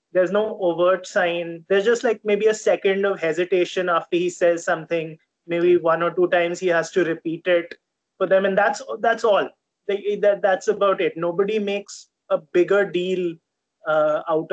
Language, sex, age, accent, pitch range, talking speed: English, male, 20-39, Indian, 165-195 Hz, 180 wpm